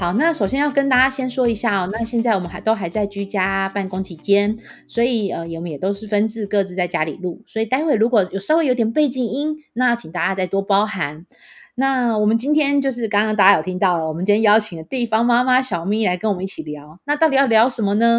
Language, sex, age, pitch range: Chinese, female, 20-39, 200-265 Hz